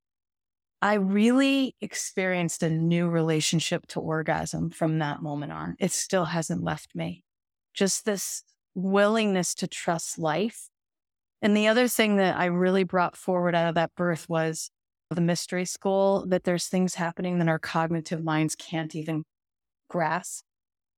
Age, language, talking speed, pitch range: 30-49, English, 145 wpm, 160-195 Hz